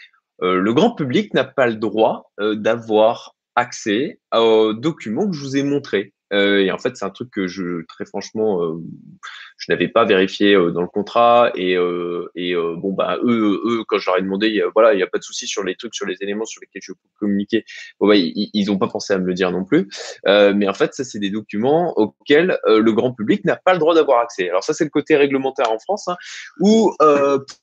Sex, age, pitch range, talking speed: male, 20-39, 105-145 Hz, 250 wpm